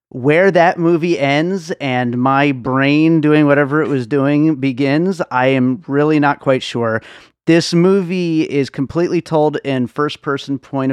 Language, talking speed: English, 150 wpm